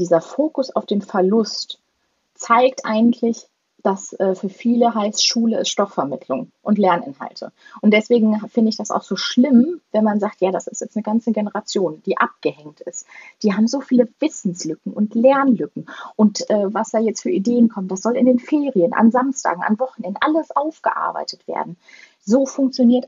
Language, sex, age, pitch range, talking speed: German, female, 30-49, 200-245 Hz, 175 wpm